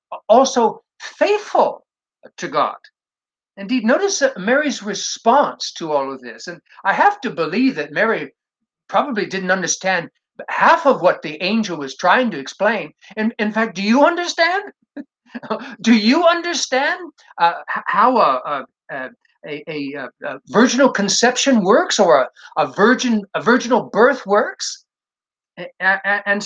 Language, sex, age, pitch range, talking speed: English, male, 60-79, 190-265 Hz, 135 wpm